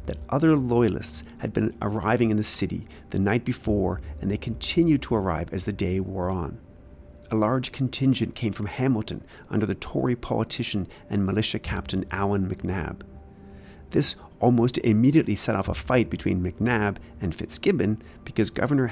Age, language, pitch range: 40-59, English, 90-120 Hz